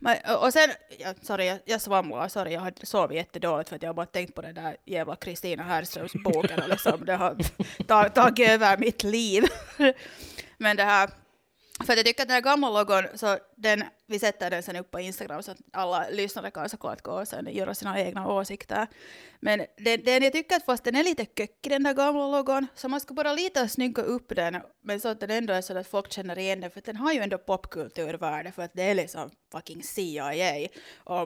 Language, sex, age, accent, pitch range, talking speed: Swedish, female, 30-49, Finnish, 185-235 Hz, 230 wpm